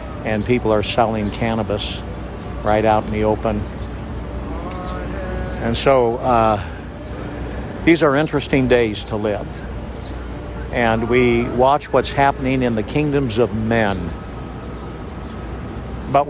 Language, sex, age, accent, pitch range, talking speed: English, male, 60-79, American, 105-135 Hz, 110 wpm